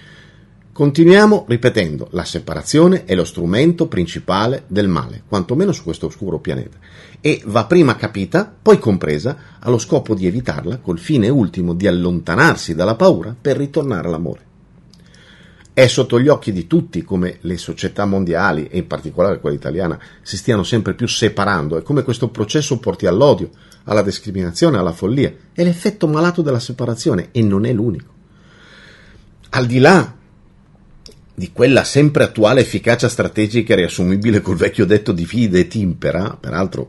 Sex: male